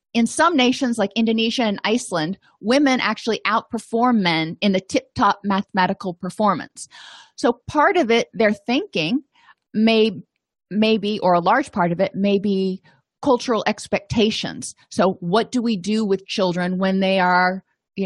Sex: female